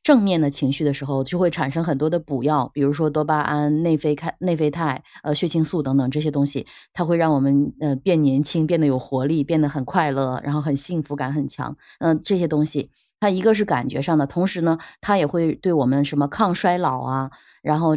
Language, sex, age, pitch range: Chinese, female, 20-39, 140-175 Hz